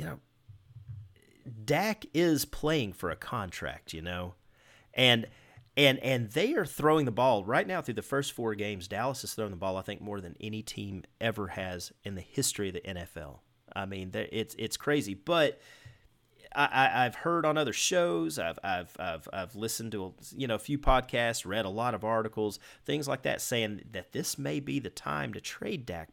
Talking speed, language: 200 wpm, English